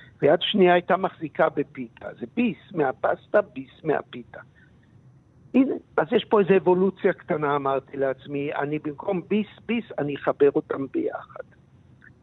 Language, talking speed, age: Hebrew, 130 wpm, 60-79